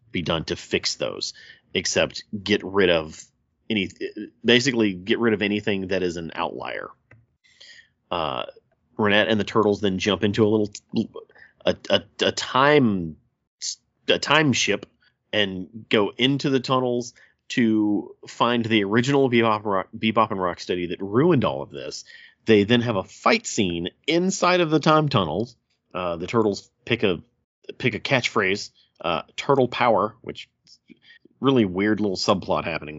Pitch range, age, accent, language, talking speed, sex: 100-125 Hz, 30-49, American, English, 155 wpm, male